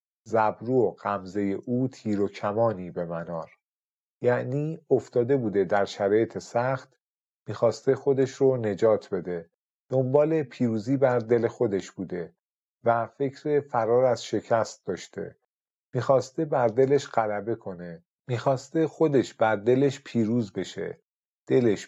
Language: Persian